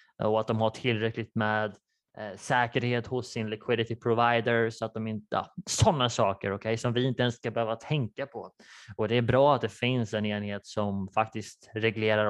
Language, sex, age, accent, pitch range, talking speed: Swedish, male, 20-39, Norwegian, 110-125 Hz, 200 wpm